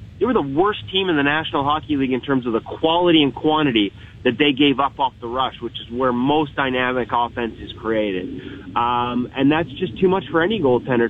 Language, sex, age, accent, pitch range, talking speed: English, male, 30-49, American, 120-165 Hz, 220 wpm